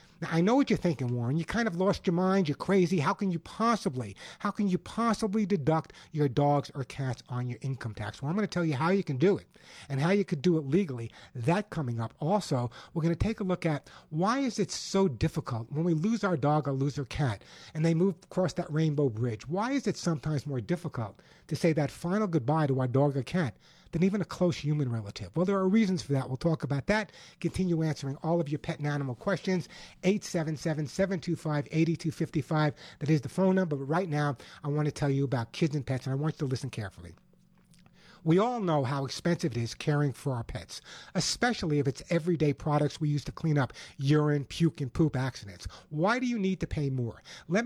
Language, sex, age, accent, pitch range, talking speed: English, male, 60-79, American, 140-185 Hz, 230 wpm